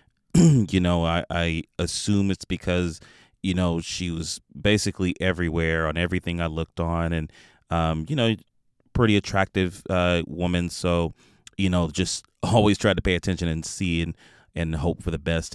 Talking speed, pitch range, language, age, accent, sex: 165 wpm, 85-105 Hz, English, 30-49, American, male